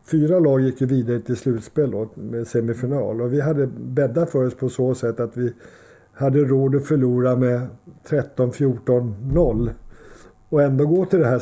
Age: 50-69